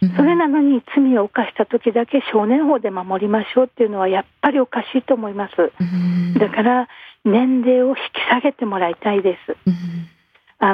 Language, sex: Japanese, female